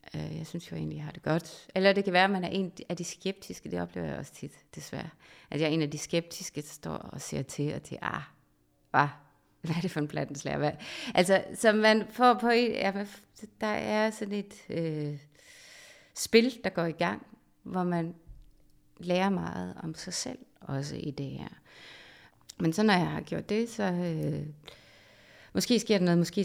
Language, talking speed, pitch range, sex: Danish, 200 wpm, 145-190 Hz, female